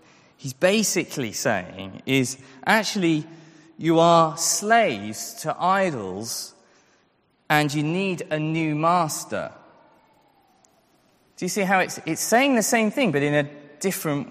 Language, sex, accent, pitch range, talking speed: English, male, British, 140-185 Hz, 125 wpm